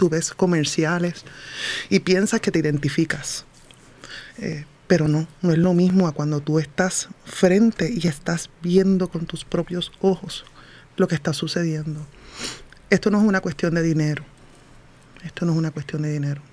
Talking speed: 165 wpm